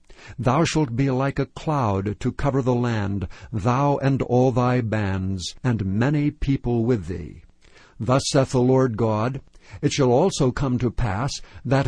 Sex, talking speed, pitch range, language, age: male, 160 wpm, 115-145 Hz, English, 60-79